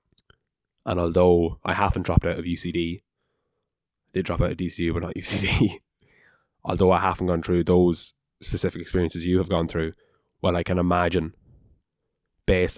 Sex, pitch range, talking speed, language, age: male, 85-95 Hz, 155 wpm, English, 20-39